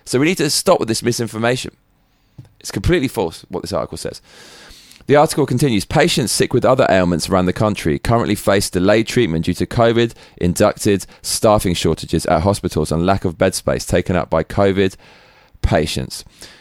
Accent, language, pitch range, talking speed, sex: British, English, 100-145 Hz, 170 wpm, male